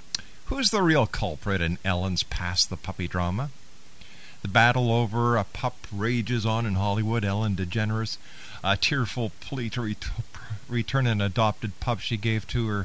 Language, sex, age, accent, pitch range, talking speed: English, male, 50-69, American, 95-125 Hz, 155 wpm